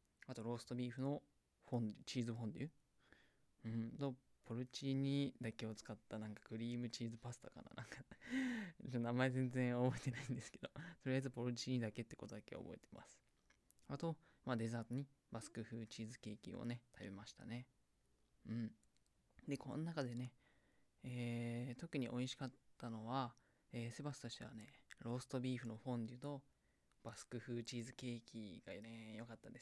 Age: 20-39